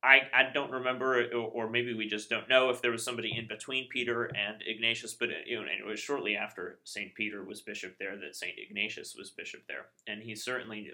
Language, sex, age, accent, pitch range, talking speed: English, male, 30-49, American, 100-120 Hz, 230 wpm